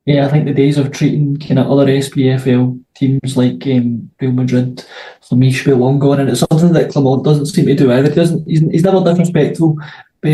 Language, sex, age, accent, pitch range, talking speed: English, male, 20-39, British, 135-155 Hz, 225 wpm